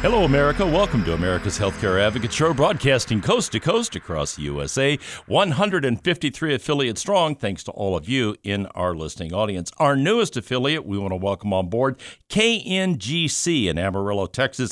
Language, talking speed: English, 155 wpm